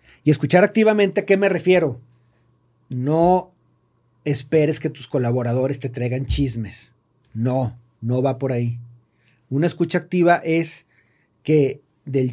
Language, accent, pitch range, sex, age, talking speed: Spanish, Mexican, 125-180 Hz, male, 40-59, 125 wpm